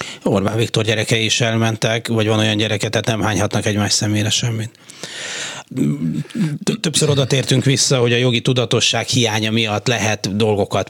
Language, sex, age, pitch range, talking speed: Hungarian, male, 30-49, 95-115 Hz, 150 wpm